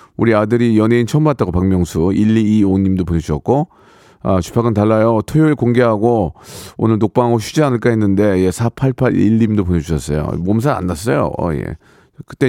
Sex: male